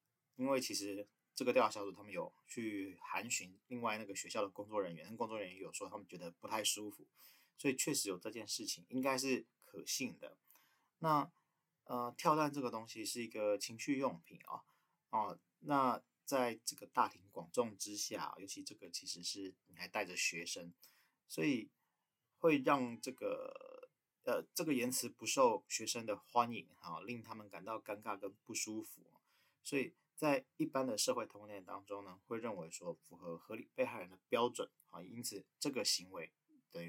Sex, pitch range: male, 100-140 Hz